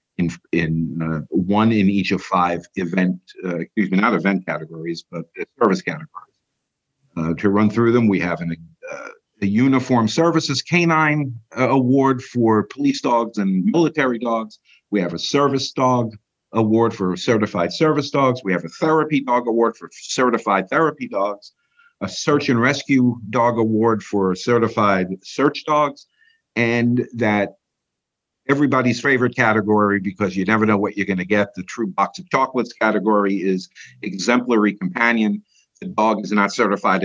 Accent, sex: American, male